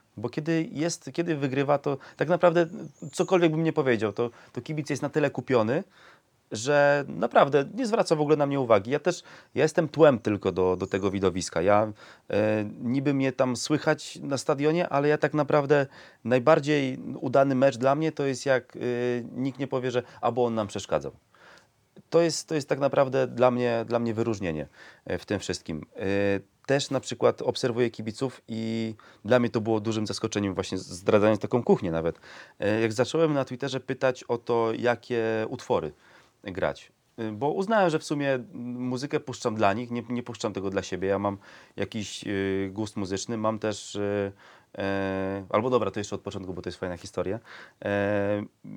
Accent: native